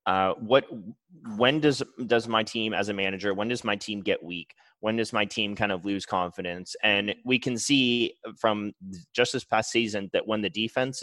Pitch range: 100-120 Hz